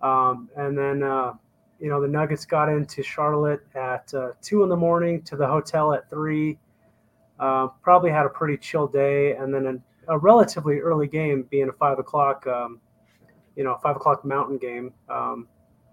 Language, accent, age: English, American, 20-39